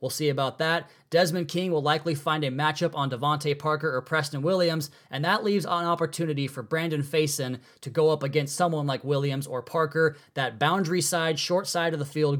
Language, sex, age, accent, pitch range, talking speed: English, male, 20-39, American, 140-160 Hz, 205 wpm